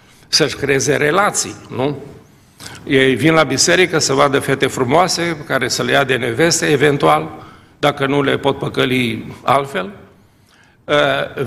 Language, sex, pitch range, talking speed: Romanian, male, 135-180 Hz, 135 wpm